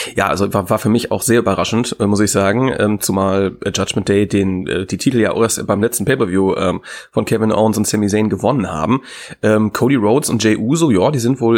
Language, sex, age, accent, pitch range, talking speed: German, male, 30-49, German, 100-120 Hz, 245 wpm